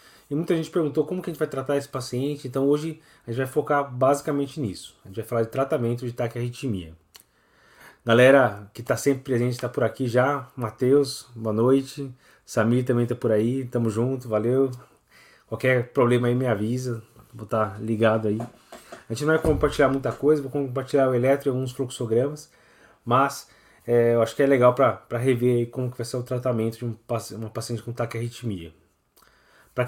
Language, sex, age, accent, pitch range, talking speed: Portuguese, male, 20-39, Brazilian, 120-140 Hz, 190 wpm